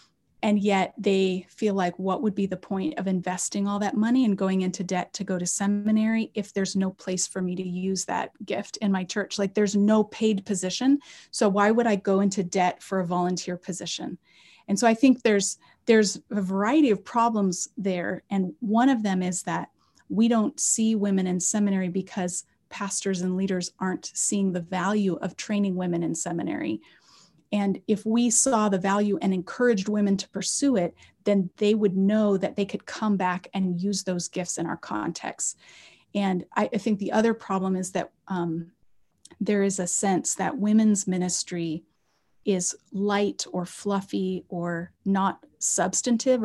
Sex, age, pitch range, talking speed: female, 30-49, 185-215 Hz, 180 wpm